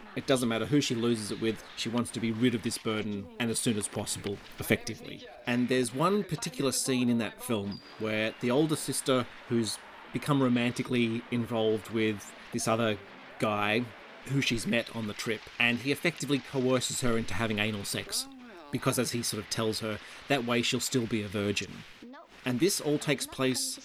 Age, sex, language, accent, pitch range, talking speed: 30-49, male, English, Australian, 110-130 Hz, 190 wpm